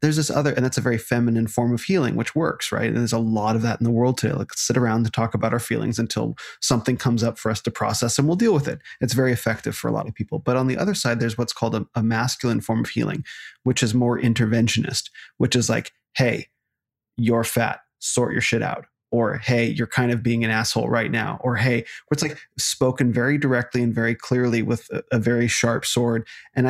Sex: male